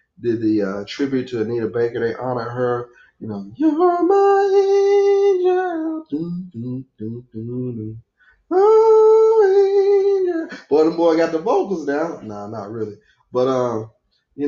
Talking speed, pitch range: 145 wpm, 100-145 Hz